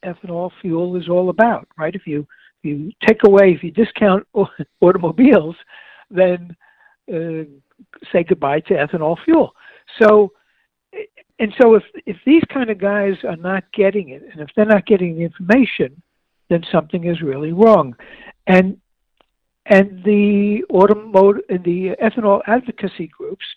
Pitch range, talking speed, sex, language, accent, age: 165-215 Hz, 145 wpm, male, English, American, 60-79